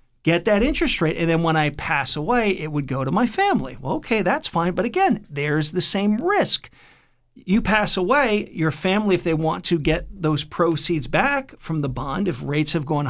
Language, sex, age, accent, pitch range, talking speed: English, male, 50-69, American, 145-195 Hz, 210 wpm